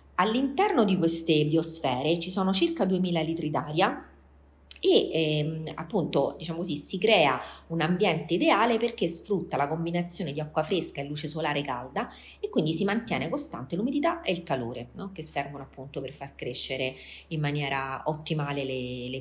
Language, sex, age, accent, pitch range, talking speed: Italian, female, 30-49, native, 140-180 Hz, 160 wpm